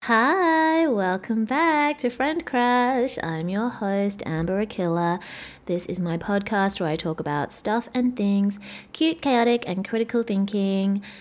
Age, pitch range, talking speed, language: 20-39, 155-200 Hz, 145 wpm, English